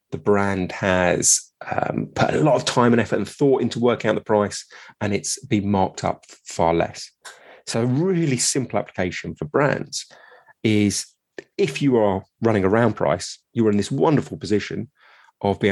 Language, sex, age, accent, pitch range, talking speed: English, male, 30-49, British, 105-135 Hz, 180 wpm